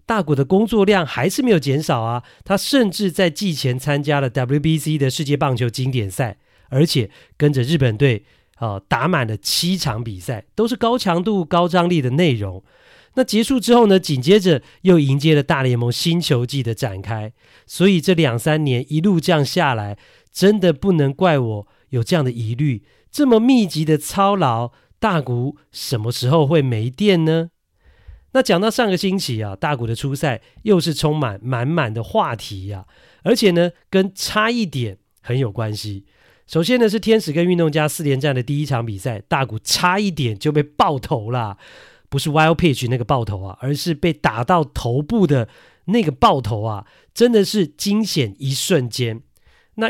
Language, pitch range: Chinese, 125-185 Hz